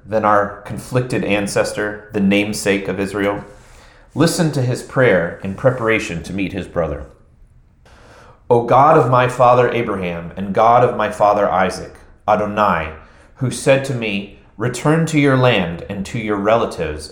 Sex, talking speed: male, 150 wpm